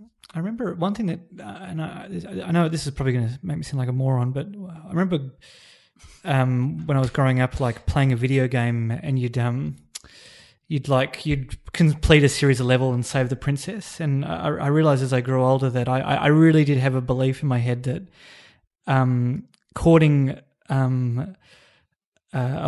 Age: 30-49